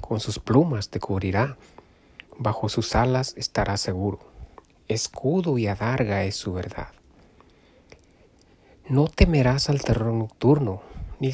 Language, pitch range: Spanish, 105-140 Hz